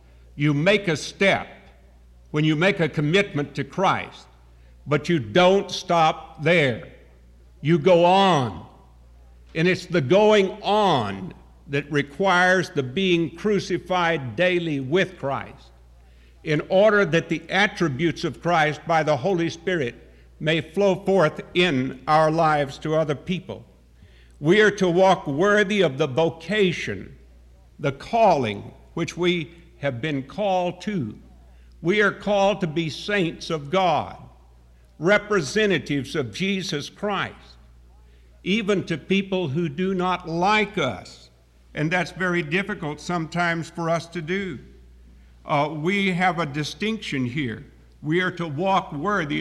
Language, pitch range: English, 125-180 Hz